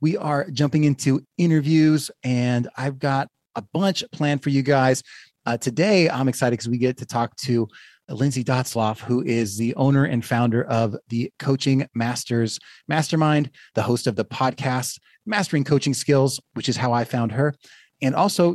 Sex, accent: male, American